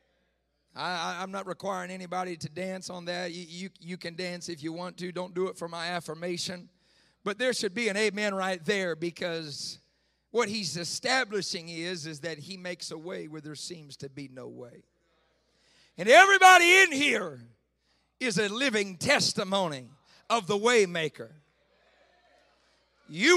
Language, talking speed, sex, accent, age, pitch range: English, 155 wpm, male, American, 50-69, 175-245 Hz